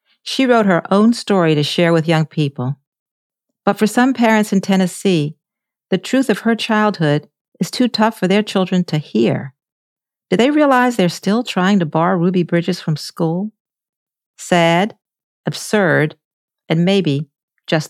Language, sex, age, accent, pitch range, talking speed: English, female, 50-69, American, 155-220 Hz, 155 wpm